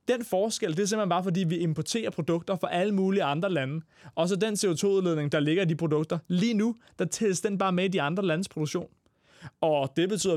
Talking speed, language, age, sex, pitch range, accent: 220 wpm, Danish, 20-39, male, 150-190 Hz, native